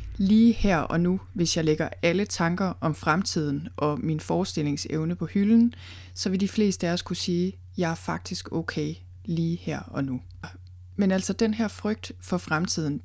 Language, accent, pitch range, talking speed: Danish, native, 130-190 Hz, 185 wpm